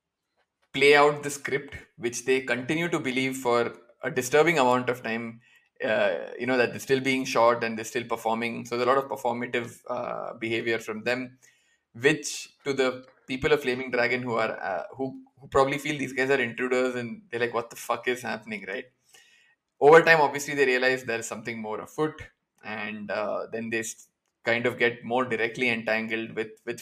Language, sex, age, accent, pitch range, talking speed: English, male, 20-39, Indian, 115-130 Hz, 190 wpm